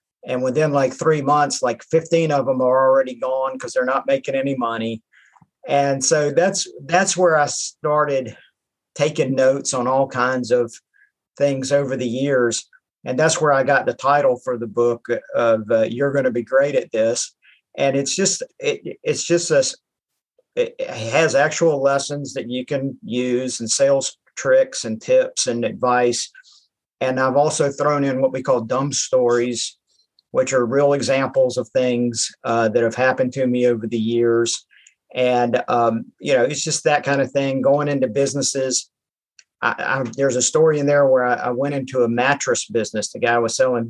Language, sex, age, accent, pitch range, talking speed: English, male, 50-69, American, 125-165 Hz, 180 wpm